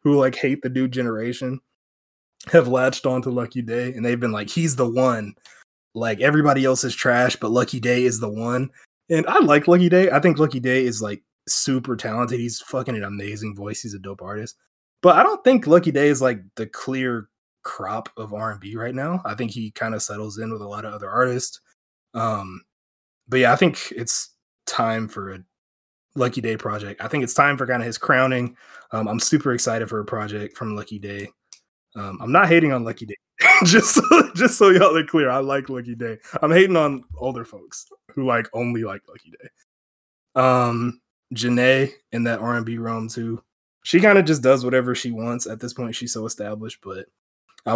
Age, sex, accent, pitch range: 20-39, male, American, 110-130 Hz